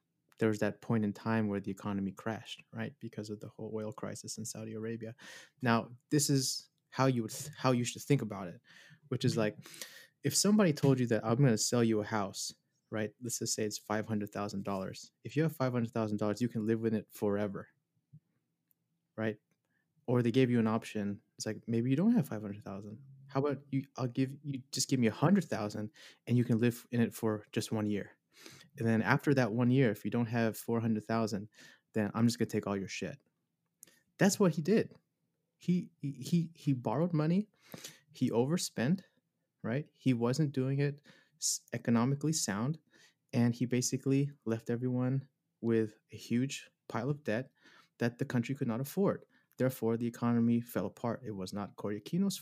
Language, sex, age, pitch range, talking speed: English, male, 20-39, 110-140 Hz, 200 wpm